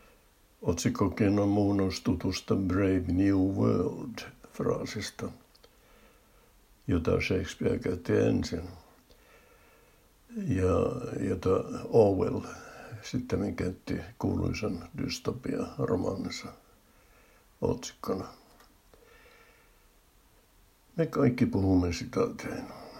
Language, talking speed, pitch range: Finnish, 55 wpm, 90-110 Hz